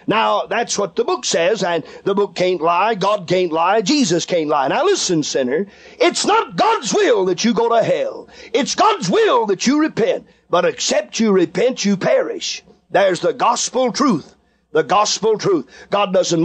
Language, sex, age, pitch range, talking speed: English, male, 40-59, 185-255 Hz, 180 wpm